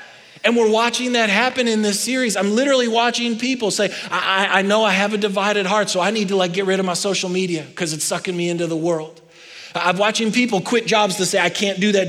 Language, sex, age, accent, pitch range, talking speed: English, male, 30-49, American, 150-205 Hz, 250 wpm